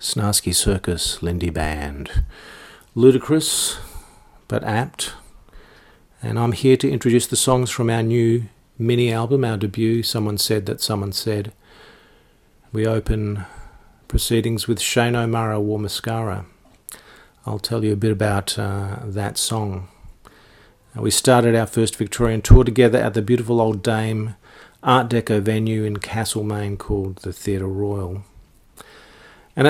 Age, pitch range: 50-69, 100-120 Hz